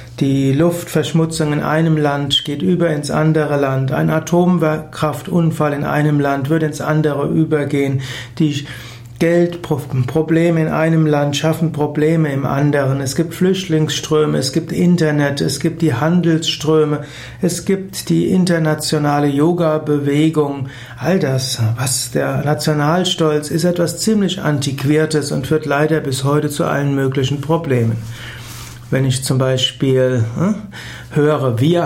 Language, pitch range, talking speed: German, 130-155 Hz, 130 wpm